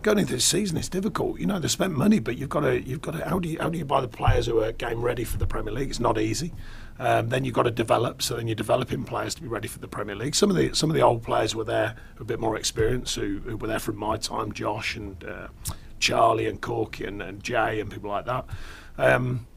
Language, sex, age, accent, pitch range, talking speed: English, male, 40-59, British, 110-125 Hz, 275 wpm